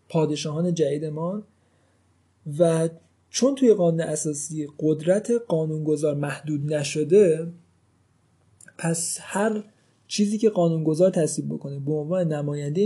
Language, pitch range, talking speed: Persian, 150-175 Hz, 100 wpm